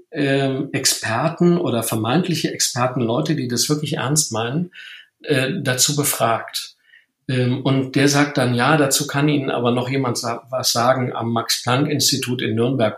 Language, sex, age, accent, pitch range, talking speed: German, male, 50-69, German, 120-155 Hz, 135 wpm